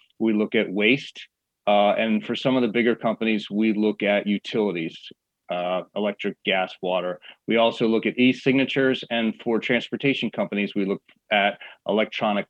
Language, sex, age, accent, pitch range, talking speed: English, male, 40-59, American, 100-115 Hz, 160 wpm